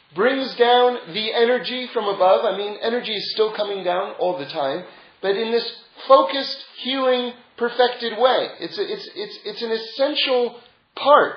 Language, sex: English, male